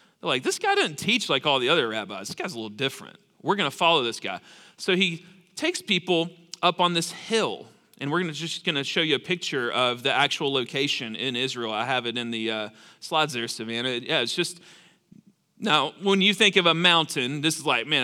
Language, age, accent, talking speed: English, 40-59, American, 225 wpm